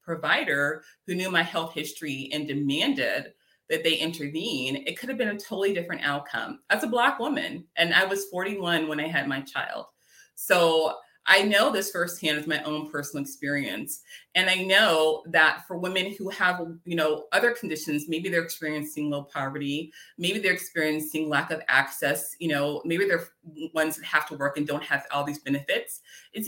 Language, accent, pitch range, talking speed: English, American, 150-190 Hz, 185 wpm